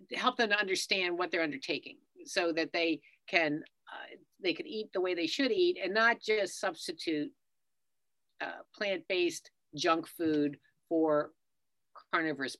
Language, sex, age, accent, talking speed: English, female, 50-69, American, 145 wpm